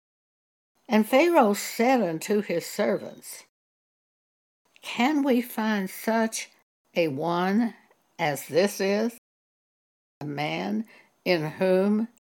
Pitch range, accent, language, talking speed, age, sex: 170-235 Hz, American, English, 95 wpm, 60-79, female